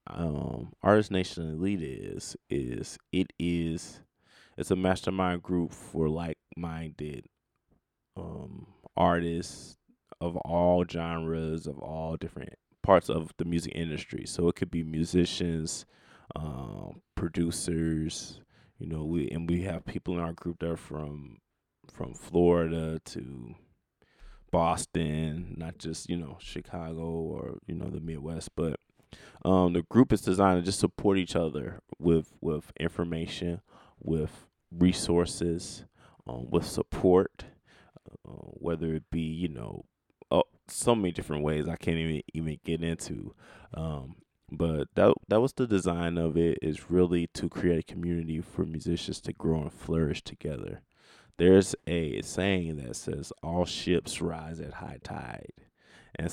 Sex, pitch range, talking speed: male, 80-90 Hz, 140 wpm